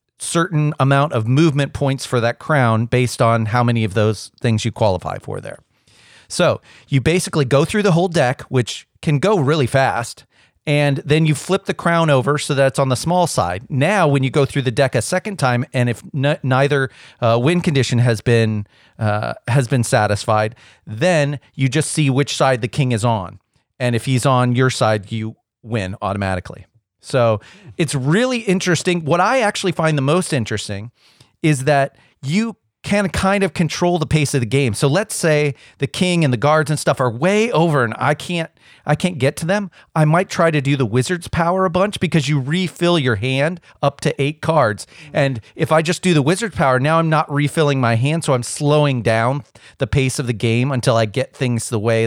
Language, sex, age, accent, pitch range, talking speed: English, male, 40-59, American, 125-165 Hz, 205 wpm